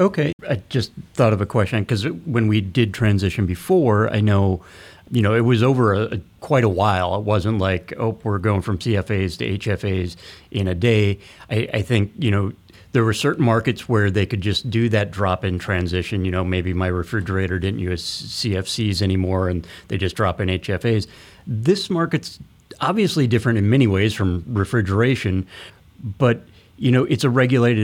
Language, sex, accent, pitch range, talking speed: English, male, American, 95-115 Hz, 185 wpm